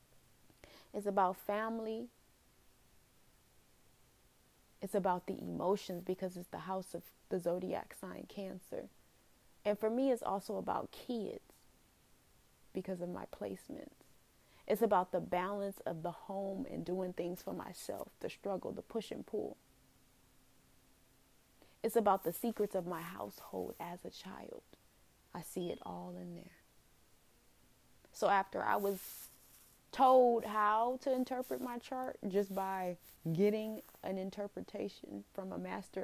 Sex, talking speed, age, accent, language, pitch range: female, 130 wpm, 20-39, American, English, 180-215 Hz